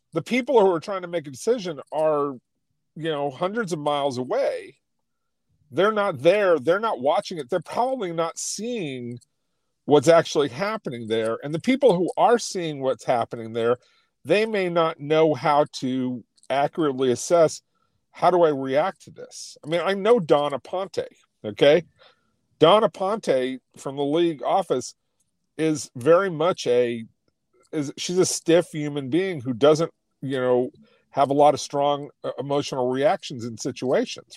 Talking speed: 155 wpm